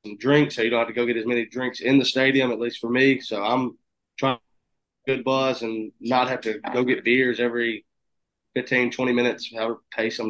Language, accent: English, American